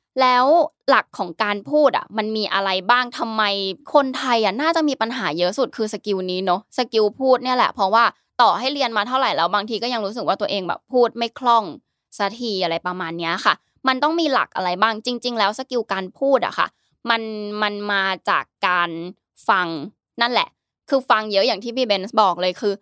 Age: 20-39